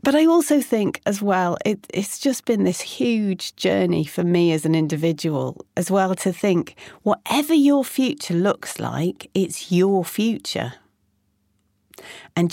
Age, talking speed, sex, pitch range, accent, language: 40-59, 145 wpm, female, 155-225 Hz, British, English